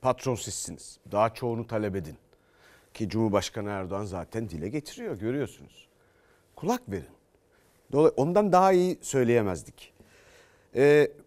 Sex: male